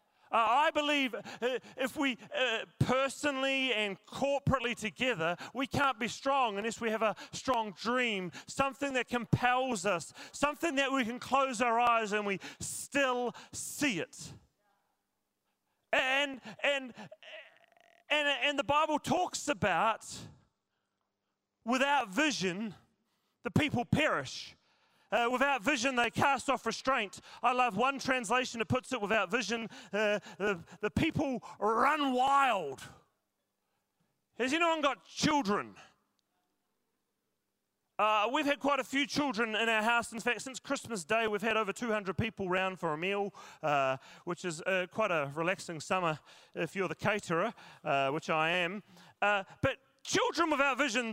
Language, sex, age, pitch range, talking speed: English, male, 30-49, 205-275 Hz, 140 wpm